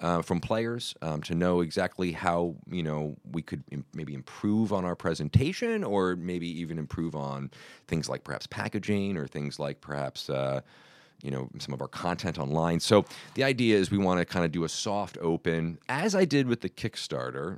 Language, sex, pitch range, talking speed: English, male, 70-95 Hz, 195 wpm